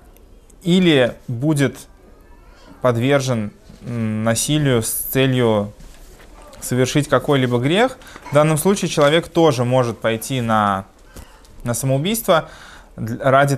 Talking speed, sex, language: 90 wpm, male, Russian